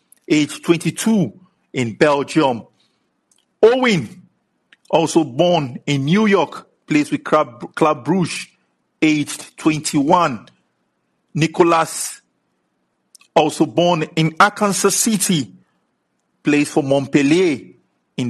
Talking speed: 85 wpm